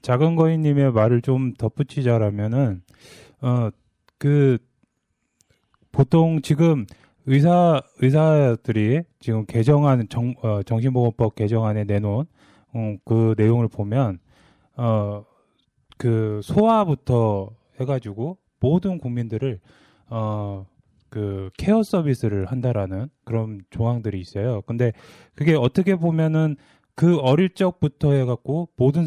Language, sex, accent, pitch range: Korean, male, native, 110-150 Hz